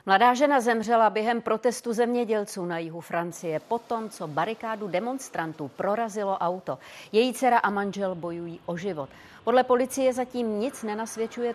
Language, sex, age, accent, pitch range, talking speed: Czech, female, 40-59, native, 180-230 Hz, 140 wpm